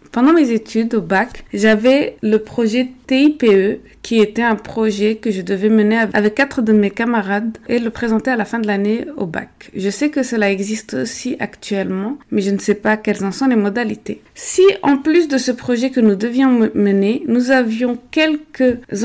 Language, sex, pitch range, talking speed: French, female, 210-250 Hz, 195 wpm